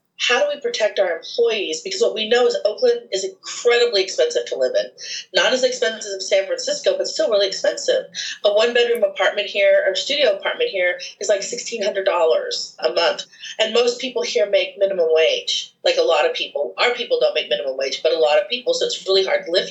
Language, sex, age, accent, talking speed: English, female, 40-59, American, 220 wpm